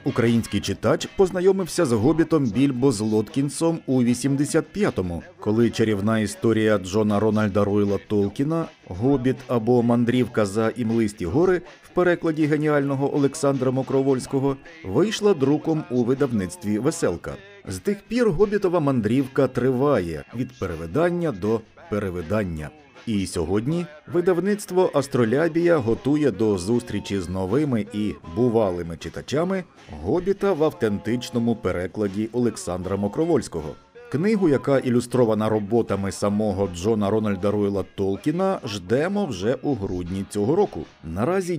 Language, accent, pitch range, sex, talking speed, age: Ukrainian, native, 105-150 Hz, male, 110 wpm, 50-69